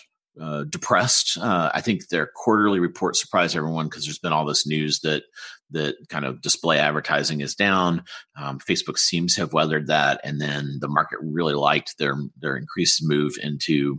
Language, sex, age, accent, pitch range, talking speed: English, male, 40-59, American, 75-85 Hz, 180 wpm